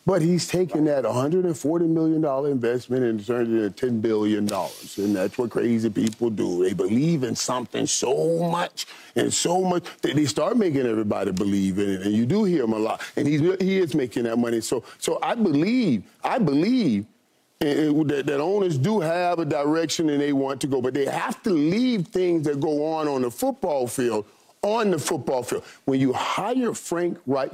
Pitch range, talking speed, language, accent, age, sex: 115-165 Hz, 190 wpm, English, American, 40-59, male